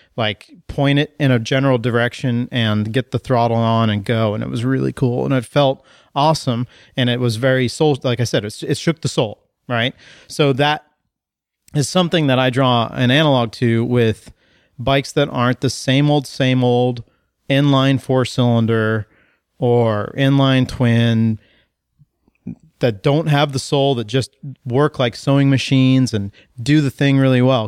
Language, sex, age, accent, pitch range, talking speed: English, male, 30-49, American, 120-145 Hz, 170 wpm